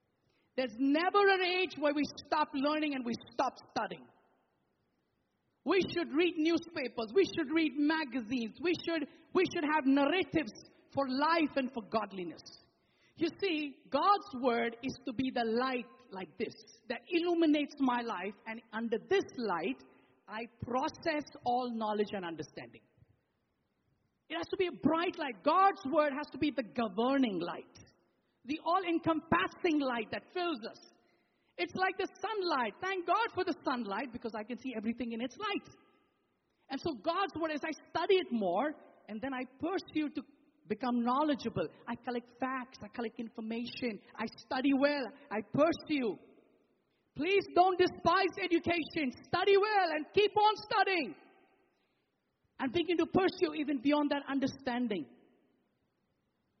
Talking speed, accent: 145 wpm, Indian